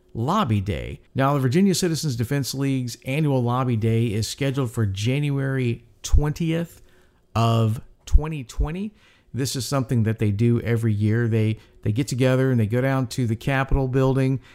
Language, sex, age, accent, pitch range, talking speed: English, male, 50-69, American, 110-135 Hz, 155 wpm